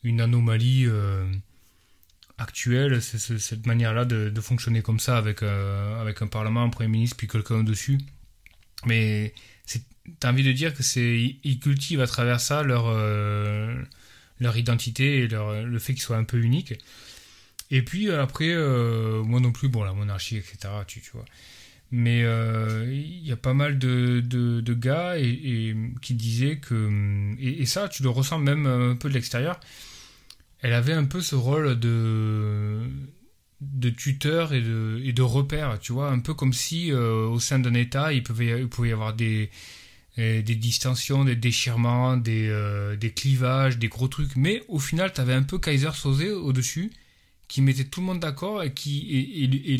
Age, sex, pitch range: 20-39, male, 115-135 Hz